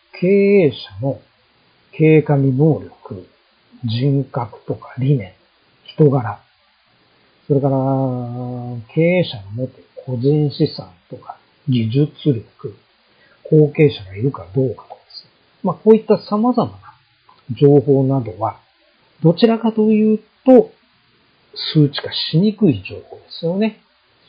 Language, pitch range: Japanese, 130-170 Hz